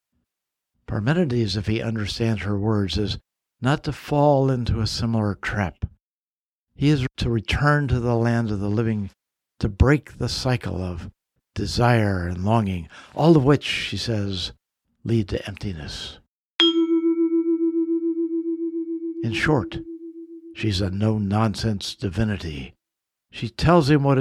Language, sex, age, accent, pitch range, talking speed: English, male, 60-79, American, 100-125 Hz, 125 wpm